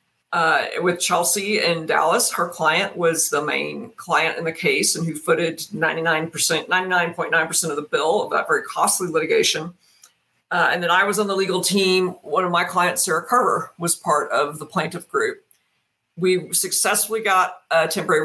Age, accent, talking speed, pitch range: 50-69, American, 195 wpm, 170-210 Hz